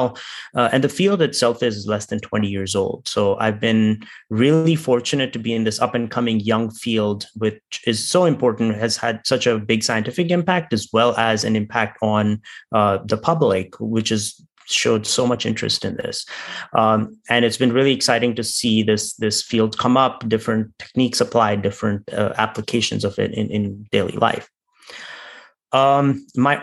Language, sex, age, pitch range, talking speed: English, male, 30-49, 110-135 Hz, 180 wpm